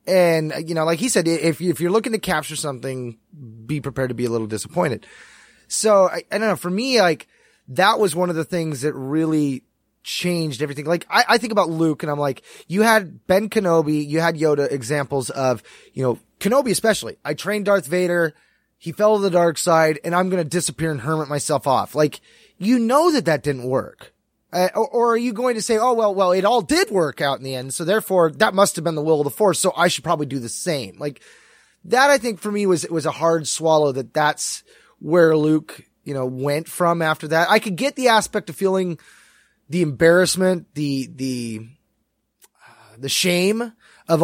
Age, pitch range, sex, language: 20-39, 150-195 Hz, male, English